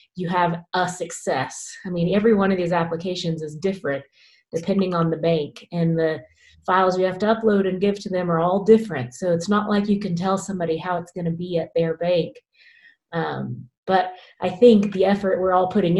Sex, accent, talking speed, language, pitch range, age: female, American, 205 wpm, English, 165-195 Hz, 30-49